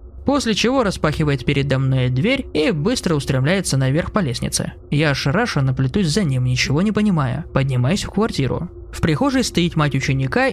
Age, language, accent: 20-39, Russian, native